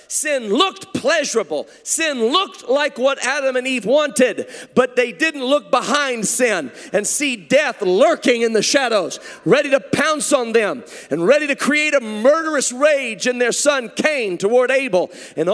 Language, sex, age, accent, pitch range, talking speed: English, male, 40-59, American, 225-290 Hz, 165 wpm